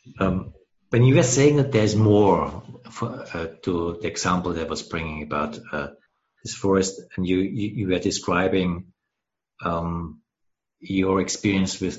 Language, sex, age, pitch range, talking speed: English, male, 60-79, 100-125 Hz, 145 wpm